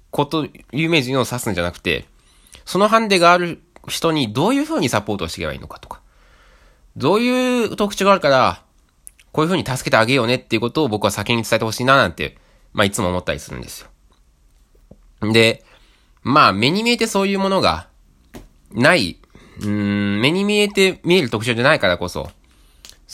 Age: 20-39